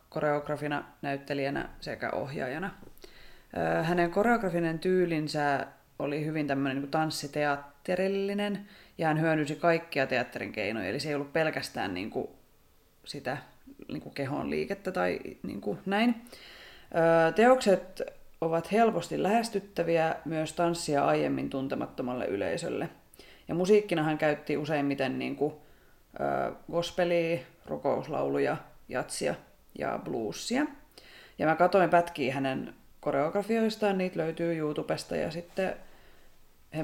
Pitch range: 145-185 Hz